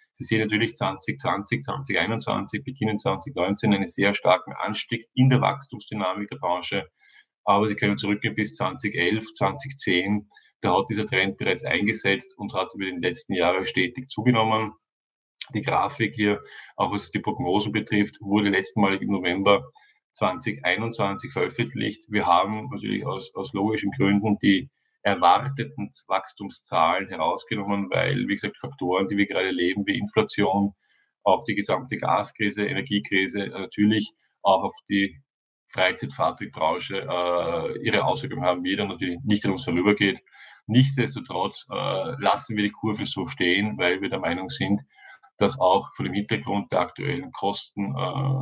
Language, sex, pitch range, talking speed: German, male, 100-110 Hz, 140 wpm